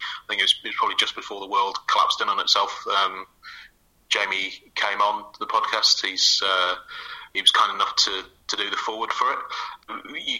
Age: 30-49